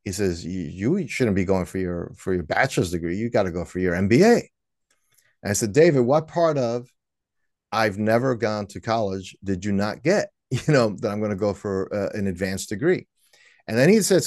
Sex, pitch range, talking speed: male, 95-120 Hz, 215 wpm